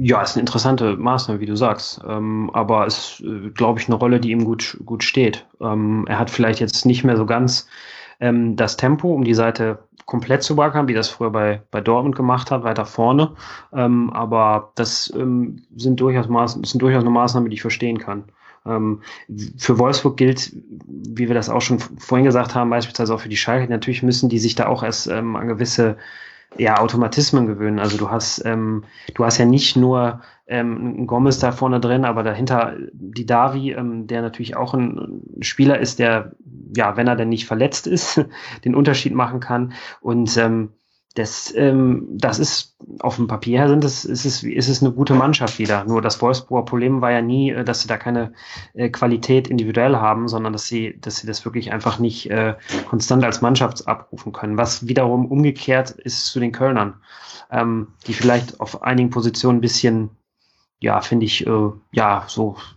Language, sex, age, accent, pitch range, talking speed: German, male, 30-49, German, 115-125 Hz, 190 wpm